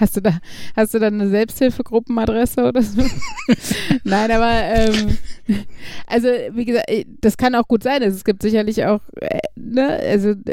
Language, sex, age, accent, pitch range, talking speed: German, female, 30-49, German, 200-240 Hz, 165 wpm